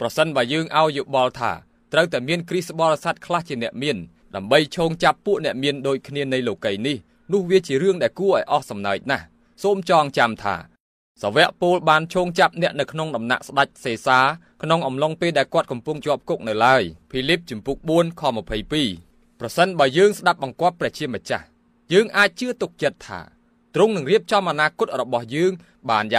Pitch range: 120-170 Hz